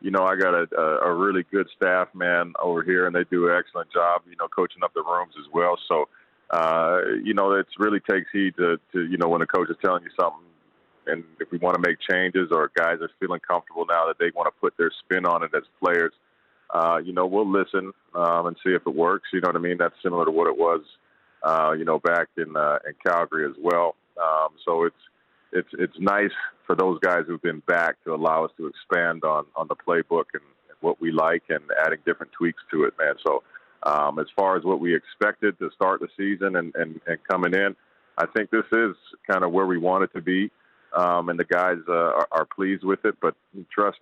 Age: 30-49